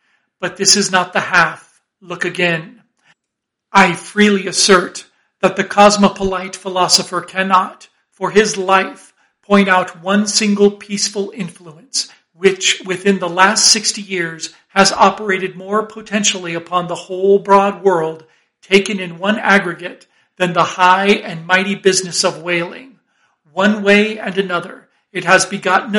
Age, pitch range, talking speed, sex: 40-59, 180-200 Hz, 135 wpm, male